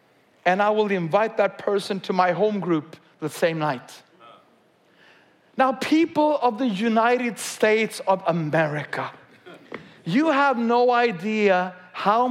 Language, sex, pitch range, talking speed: English, male, 190-260 Hz, 125 wpm